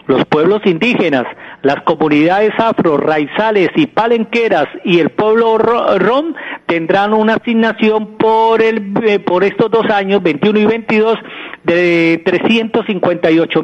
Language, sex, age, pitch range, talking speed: Spanish, male, 40-59, 175-225 Hz, 115 wpm